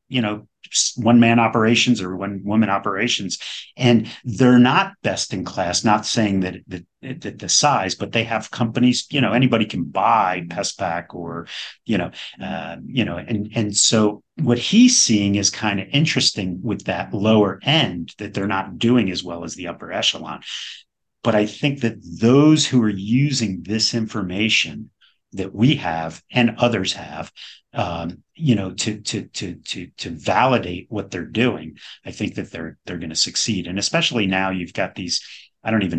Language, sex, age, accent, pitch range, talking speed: English, male, 40-59, American, 90-120 Hz, 180 wpm